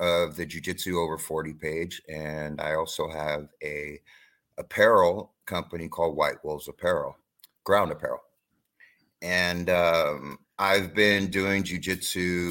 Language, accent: English, American